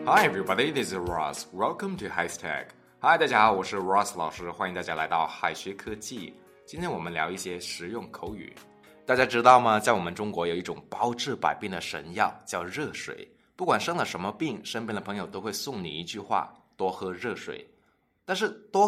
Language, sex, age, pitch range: Chinese, male, 20-39, 95-135 Hz